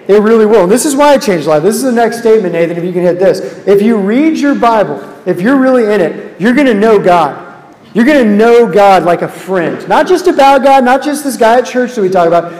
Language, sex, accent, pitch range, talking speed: English, male, American, 185-245 Hz, 275 wpm